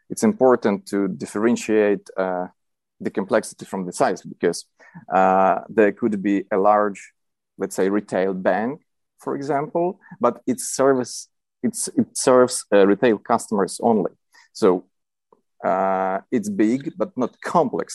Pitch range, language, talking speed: 100-135 Hz, English, 135 wpm